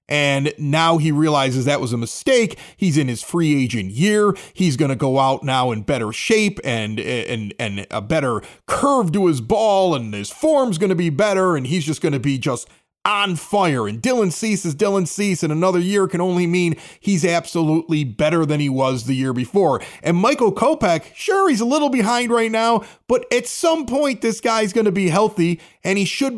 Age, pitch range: 30-49, 150-215 Hz